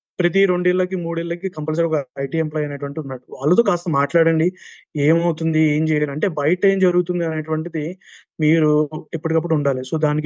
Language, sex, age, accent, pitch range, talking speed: Telugu, male, 20-39, native, 150-180 Hz, 140 wpm